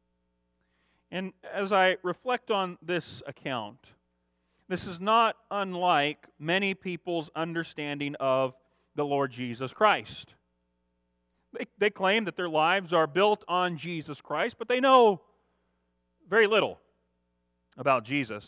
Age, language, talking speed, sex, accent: 40-59, English, 120 wpm, male, American